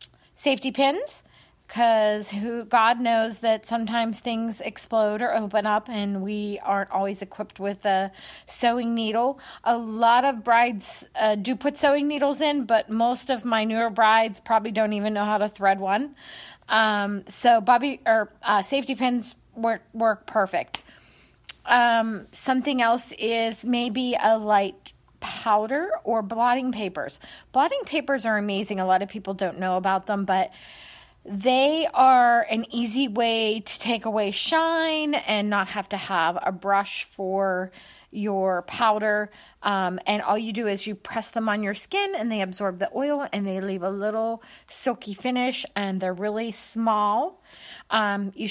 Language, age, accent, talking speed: English, 30-49, American, 160 wpm